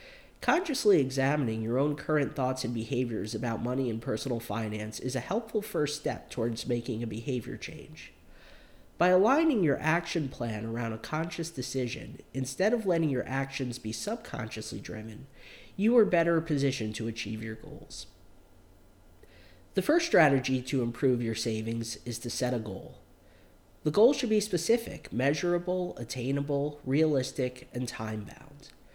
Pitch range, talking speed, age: 115-160 Hz, 145 wpm, 40-59